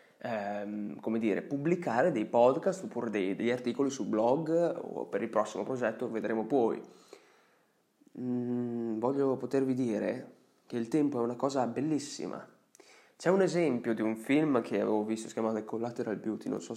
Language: Italian